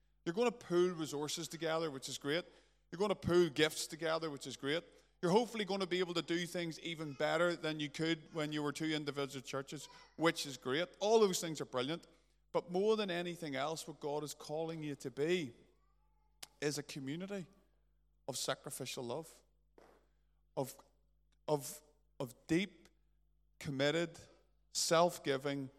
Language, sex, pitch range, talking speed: English, male, 135-165 Hz, 160 wpm